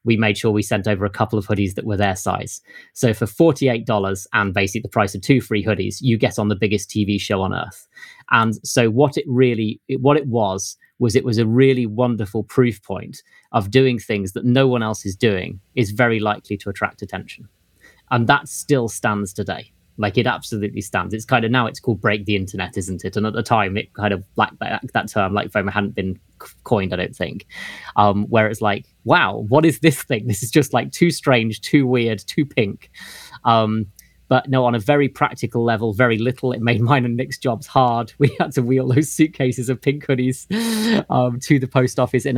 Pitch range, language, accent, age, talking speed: 105-130 Hz, English, British, 20-39, 220 wpm